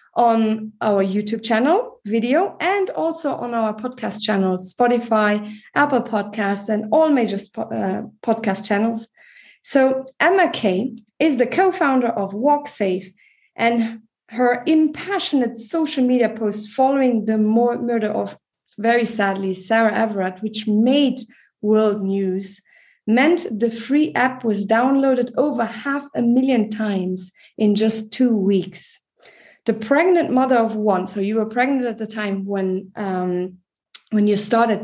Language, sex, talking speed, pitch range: English, female, 135 wpm, 210-265 Hz